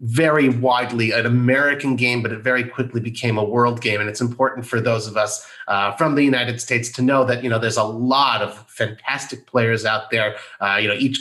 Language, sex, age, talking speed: English, male, 30-49, 225 wpm